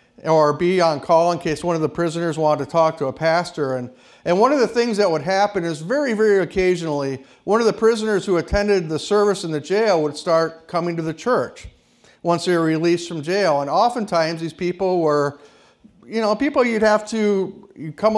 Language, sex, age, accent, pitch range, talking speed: English, male, 50-69, American, 150-195 Hz, 210 wpm